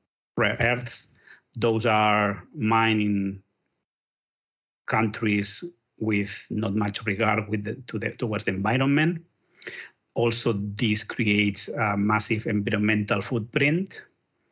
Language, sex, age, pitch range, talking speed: English, male, 30-49, 105-120 Hz, 95 wpm